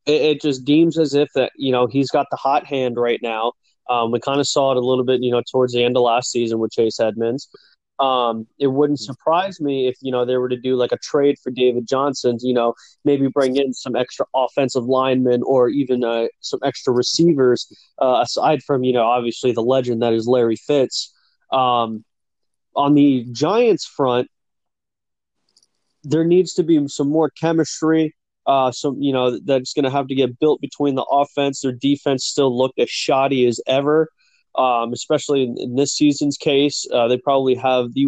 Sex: male